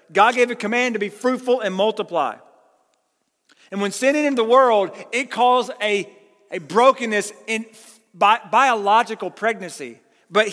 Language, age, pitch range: English, 40-59, 180-245 Hz